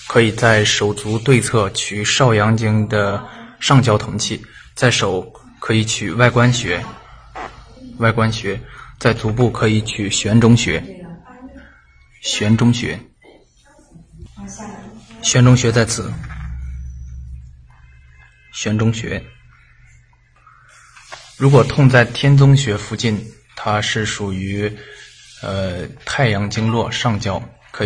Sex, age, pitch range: male, 20-39, 105-130 Hz